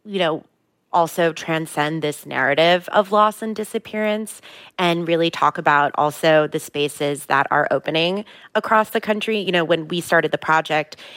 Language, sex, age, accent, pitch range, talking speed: English, female, 30-49, American, 145-170 Hz, 160 wpm